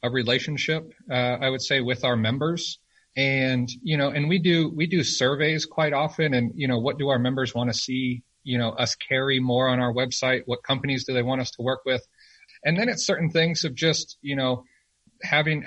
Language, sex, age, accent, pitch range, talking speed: English, male, 30-49, American, 115-150 Hz, 220 wpm